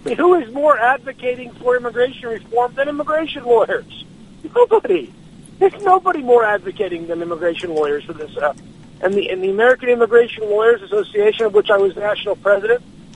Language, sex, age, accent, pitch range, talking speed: English, male, 50-69, American, 195-310 Hz, 170 wpm